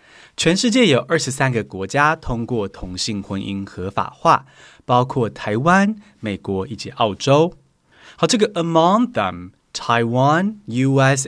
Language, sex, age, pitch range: Chinese, male, 20-39, 115-175 Hz